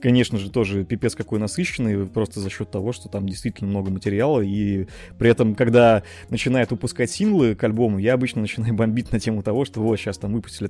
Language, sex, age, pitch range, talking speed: Russian, male, 20-39, 100-125 Hz, 200 wpm